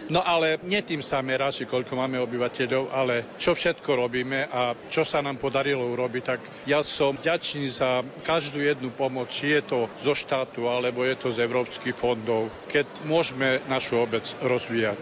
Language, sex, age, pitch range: Slovak, male, 50-69, 130-150 Hz